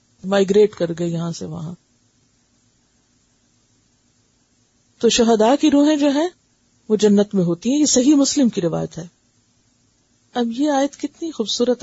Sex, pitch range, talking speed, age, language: female, 175-230 Hz, 140 wpm, 50-69, Urdu